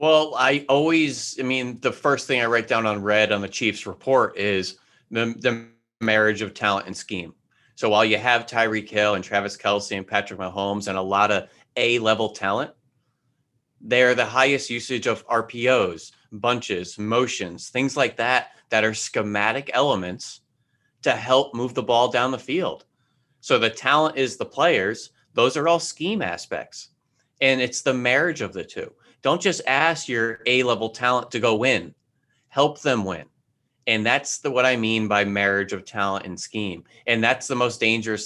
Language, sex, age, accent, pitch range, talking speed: English, male, 30-49, American, 105-125 Hz, 175 wpm